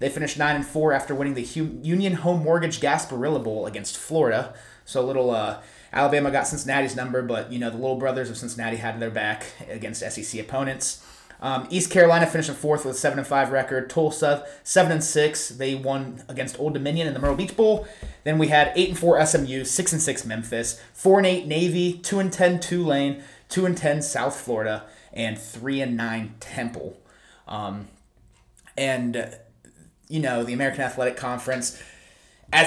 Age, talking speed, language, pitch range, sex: 30-49, 185 wpm, English, 125-155 Hz, male